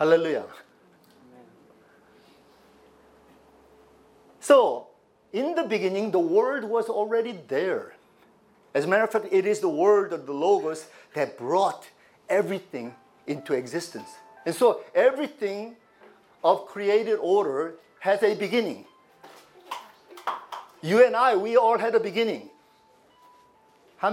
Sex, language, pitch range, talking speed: male, English, 170-245 Hz, 110 wpm